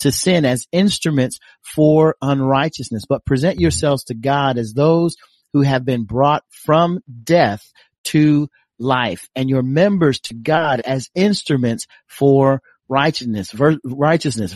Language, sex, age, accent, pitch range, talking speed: English, male, 40-59, American, 120-150 Hz, 130 wpm